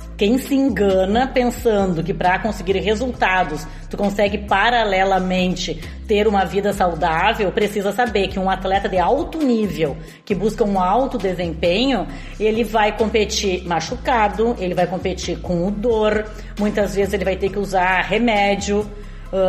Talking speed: 145 wpm